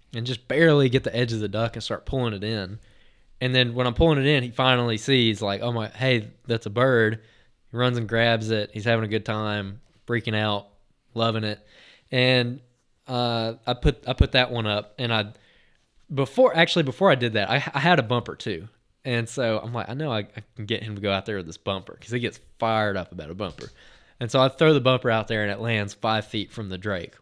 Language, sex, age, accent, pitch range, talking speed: English, male, 20-39, American, 110-130 Hz, 240 wpm